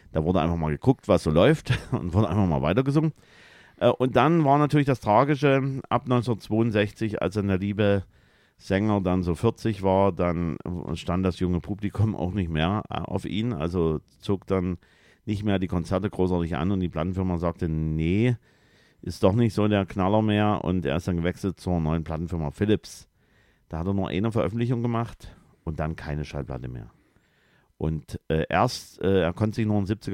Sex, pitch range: male, 85-110 Hz